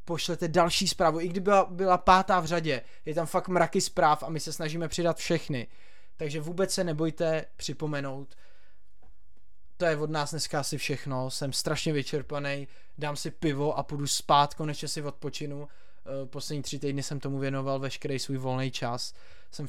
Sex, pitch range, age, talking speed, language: male, 130-155 Hz, 20-39, 175 wpm, Czech